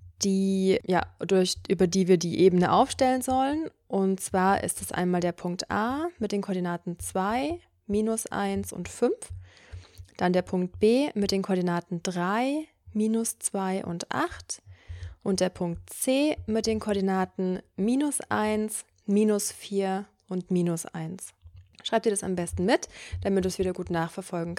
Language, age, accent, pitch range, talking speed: German, 20-39, German, 170-210 Hz, 155 wpm